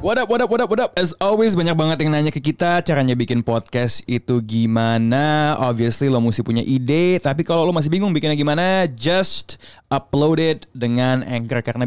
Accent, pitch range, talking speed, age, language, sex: native, 120-155 Hz, 185 wpm, 20-39, Indonesian, male